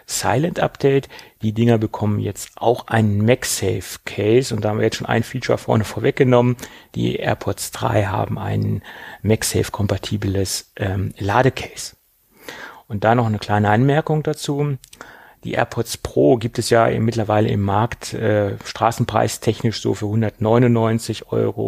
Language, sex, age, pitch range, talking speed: German, male, 40-59, 105-120 Hz, 135 wpm